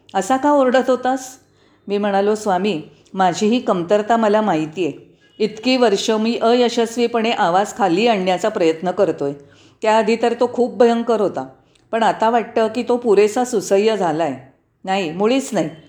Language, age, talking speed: Marathi, 40-59, 155 wpm